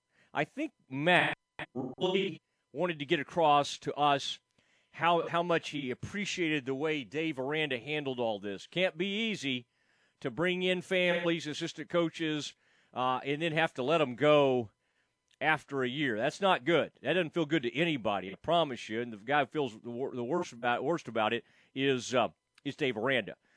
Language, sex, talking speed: English, male, 185 wpm